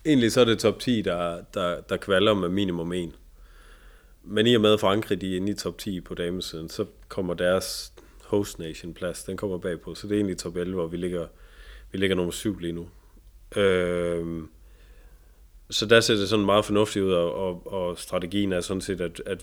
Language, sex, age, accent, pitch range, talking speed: Danish, male, 30-49, native, 85-100 Hz, 205 wpm